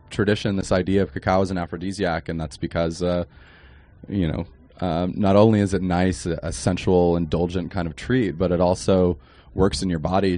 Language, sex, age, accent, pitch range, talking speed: English, male, 20-39, American, 85-100 Hz, 195 wpm